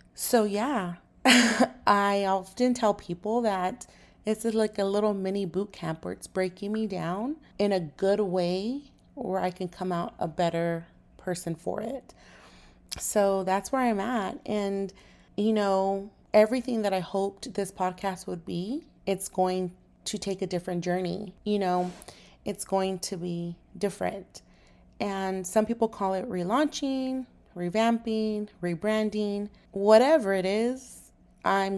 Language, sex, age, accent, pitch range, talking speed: English, female, 30-49, American, 185-220 Hz, 140 wpm